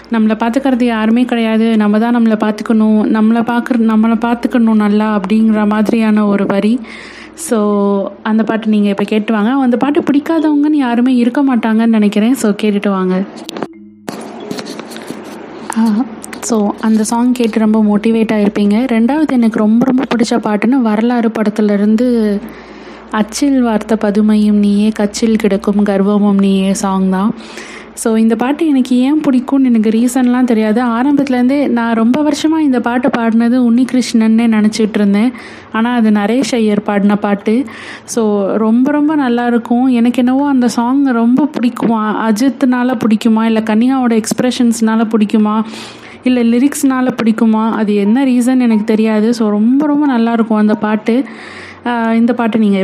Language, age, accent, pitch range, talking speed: Tamil, 20-39, native, 215-245 Hz, 135 wpm